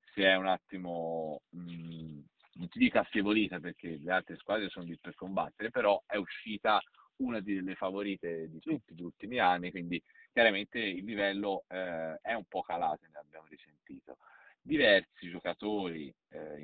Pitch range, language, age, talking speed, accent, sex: 85-100 Hz, Italian, 40-59, 150 wpm, native, male